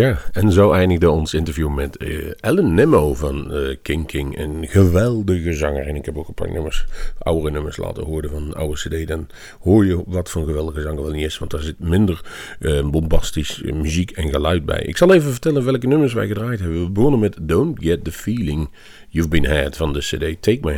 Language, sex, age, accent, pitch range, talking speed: Dutch, male, 40-59, Dutch, 80-105 Hz, 225 wpm